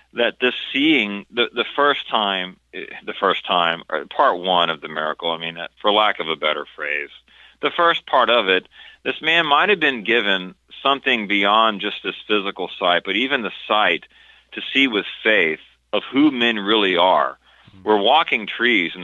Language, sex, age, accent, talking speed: English, male, 40-59, American, 185 wpm